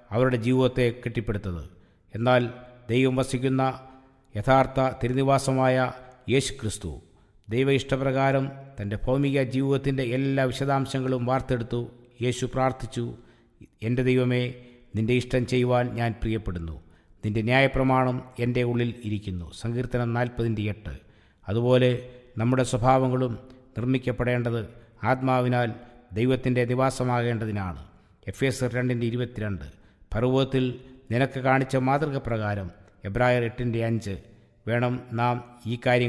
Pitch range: 115-130 Hz